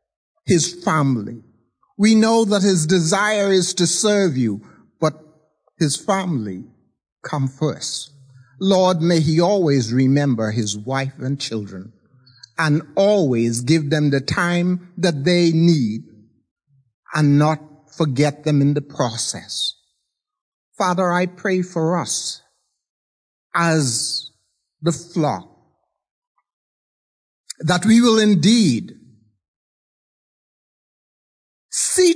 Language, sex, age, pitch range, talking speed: English, male, 60-79, 125-185 Hz, 100 wpm